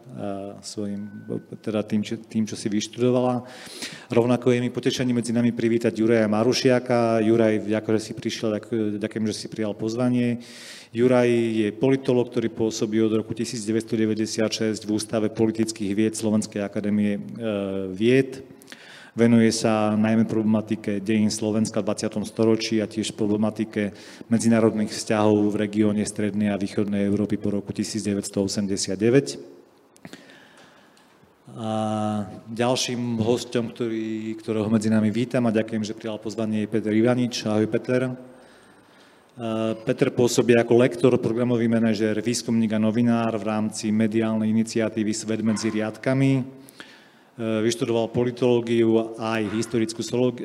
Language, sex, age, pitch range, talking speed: Slovak, male, 40-59, 105-120 Hz, 125 wpm